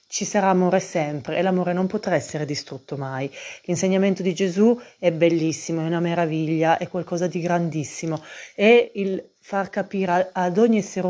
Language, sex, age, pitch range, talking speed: Italian, female, 30-49, 165-190 Hz, 160 wpm